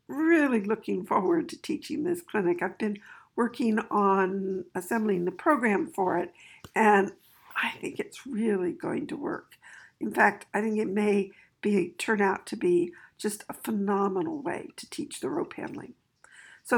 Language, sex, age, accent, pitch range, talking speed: English, female, 60-79, American, 205-295 Hz, 160 wpm